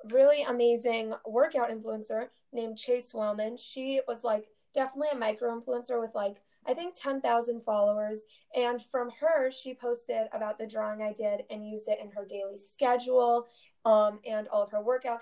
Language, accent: English, American